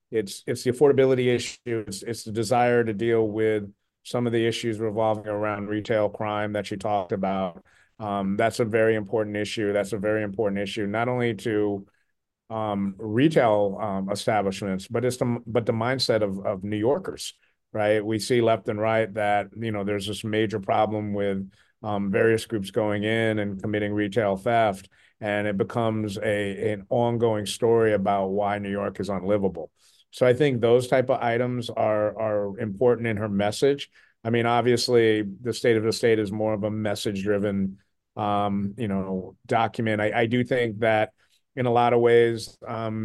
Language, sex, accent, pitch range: English, male, American, 105-120 Hz